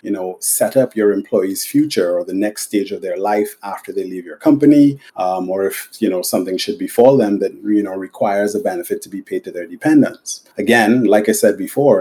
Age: 30-49